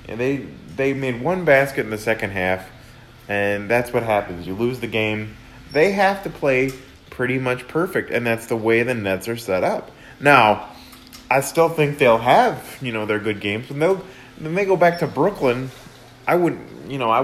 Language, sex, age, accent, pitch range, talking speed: English, male, 30-49, American, 110-135 Hz, 200 wpm